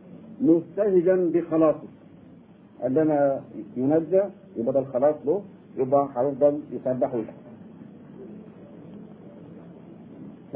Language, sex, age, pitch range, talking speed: Arabic, male, 50-69, 155-200 Hz, 65 wpm